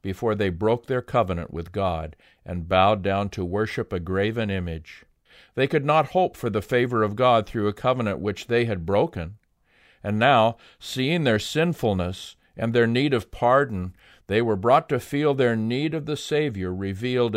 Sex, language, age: male, English, 50-69